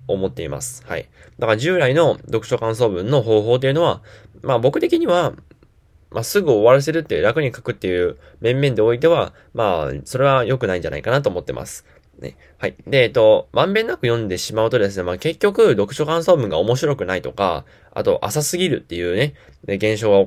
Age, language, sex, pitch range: 10-29, Japanese, male, 95-145 Hz